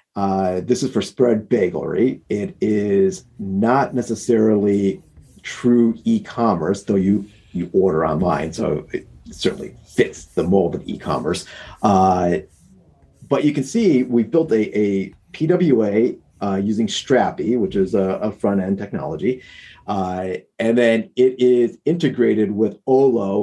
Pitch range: 100-125 Hz